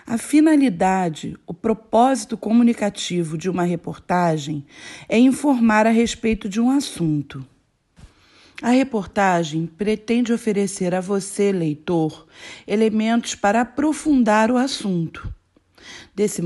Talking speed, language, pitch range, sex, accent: 100 wpm, Portuguese, 180-240 Hz, female, Brazilian